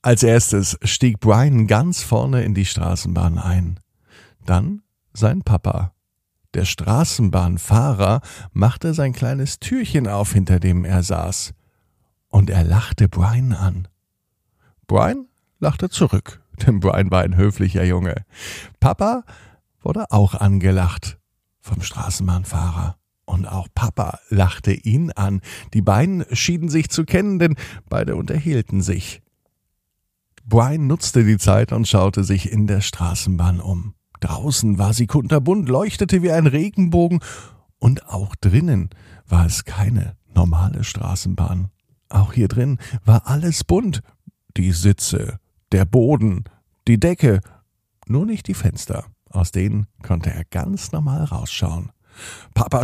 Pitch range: 95-130 Hz